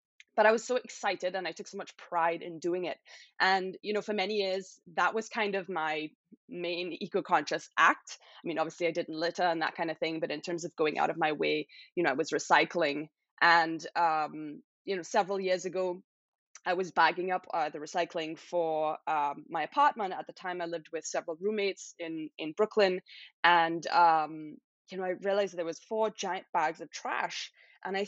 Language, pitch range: English, 165-215 Hz